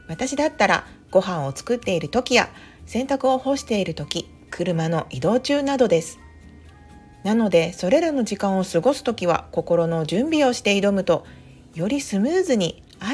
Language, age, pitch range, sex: Japanese, 40-59, 170-260 Hz, female